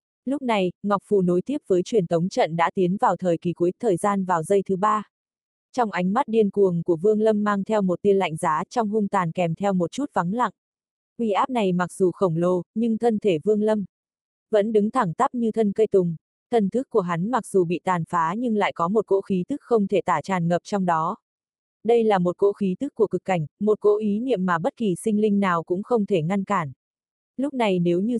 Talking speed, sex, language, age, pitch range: 245 wpm, female, Vietnamese, 20-39, 180-220 Hz